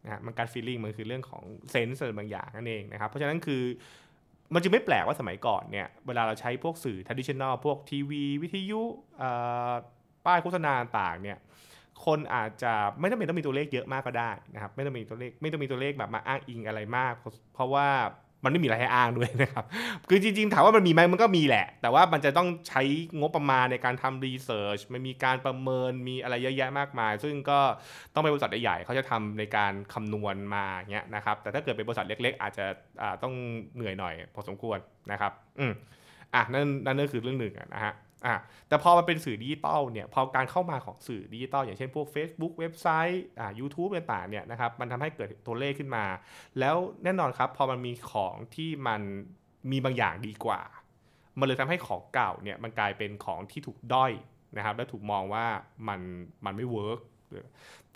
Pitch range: 110-145 Hz